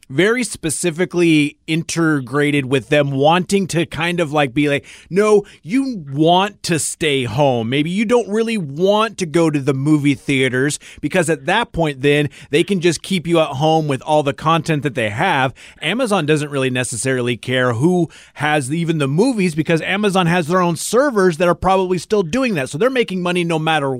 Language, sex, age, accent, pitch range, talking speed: English, male, 30-49, American, 145-180 Hz, 190 wpm